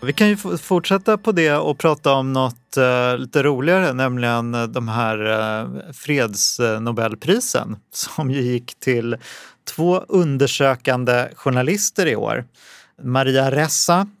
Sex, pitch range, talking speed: male, 115-135 Hz, 115 wpm